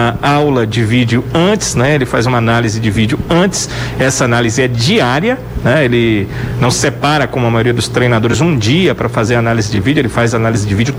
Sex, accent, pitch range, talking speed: male, Brazilian, 125-160 Hz, 200 wpm